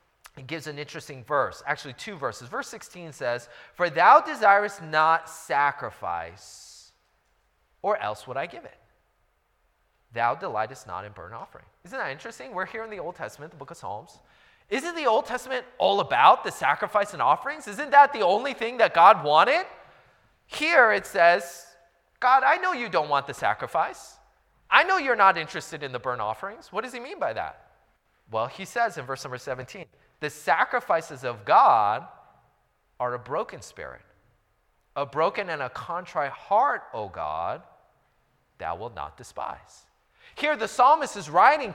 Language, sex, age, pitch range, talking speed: English, male, 20-39, 160-265 Hz, 170 wpm